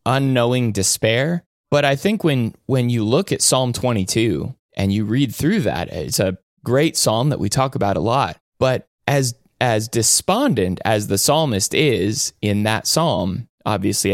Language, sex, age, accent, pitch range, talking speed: English, male, 20-39, American, 100-130 Hz, 165 wpm